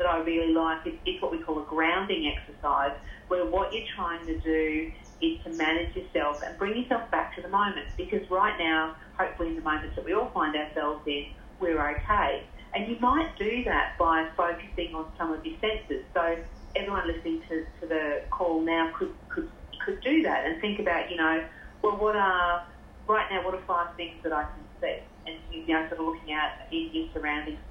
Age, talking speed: 40-59, 210 wpm